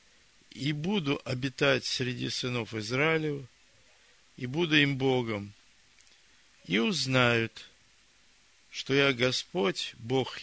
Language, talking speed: Russian, 90 wpm